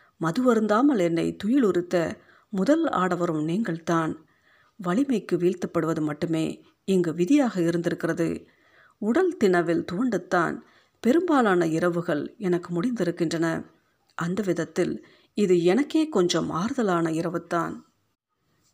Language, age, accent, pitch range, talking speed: Tamil, 50-69, native, 170-220 Hz, 90 wpm